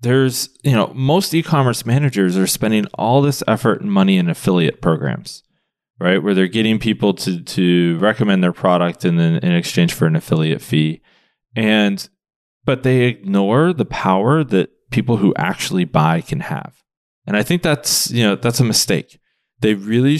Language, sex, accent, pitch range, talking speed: English, male, American, 95-145 Hz, 175 wpm